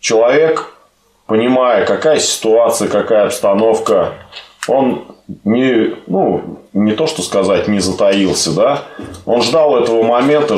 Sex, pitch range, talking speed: male, 95-115 Hz, 115 wpm